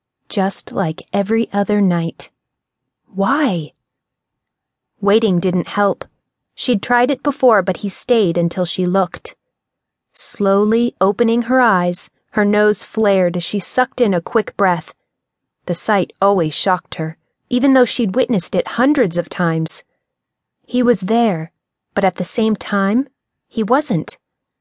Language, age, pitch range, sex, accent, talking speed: English, 30-49, 185-235 Hz, female, American, 135 wpm